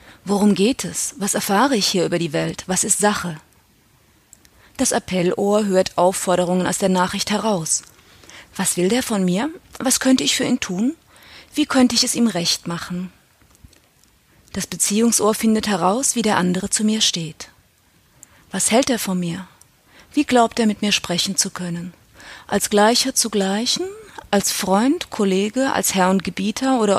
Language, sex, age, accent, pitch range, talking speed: German, female, 30-49, German, 185-230 Hz, 165 wpm